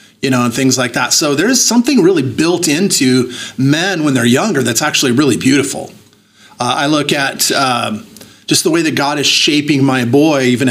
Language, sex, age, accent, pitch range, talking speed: English, male, 30-49, American, 130-155 Hz, 195 wpm